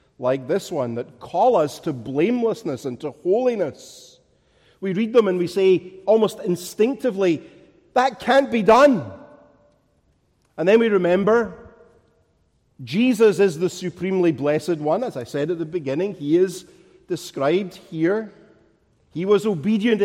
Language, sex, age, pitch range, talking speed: English, male, 50-69, 135-205 Hz, 140 wpm